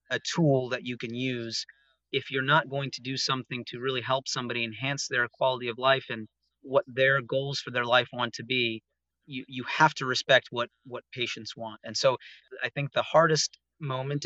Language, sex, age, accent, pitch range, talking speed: English, male, 30-49, American, 120-145 Hz, 200 wpm